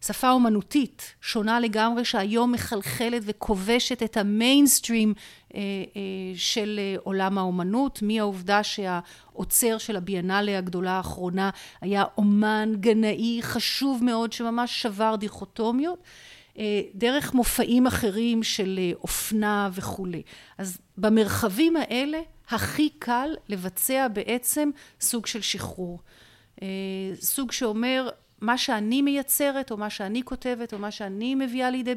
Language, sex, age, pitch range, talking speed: Hebrew, female, 40-59, 205-265 Hz, 115 wpm